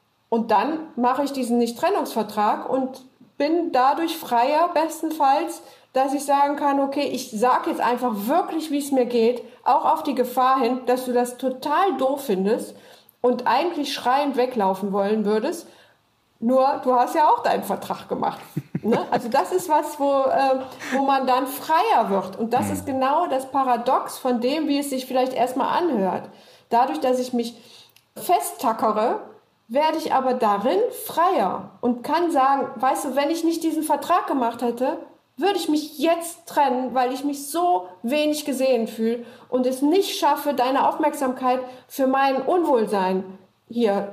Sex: female